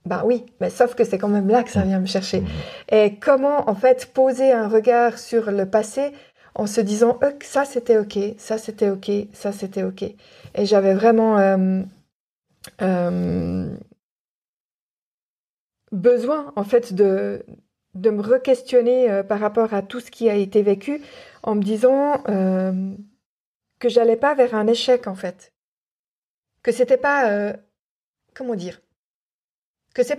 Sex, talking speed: female, 155 wpm